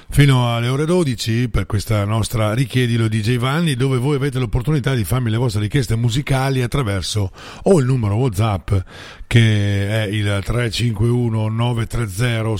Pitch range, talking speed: 105-140 Hz, 145 wpm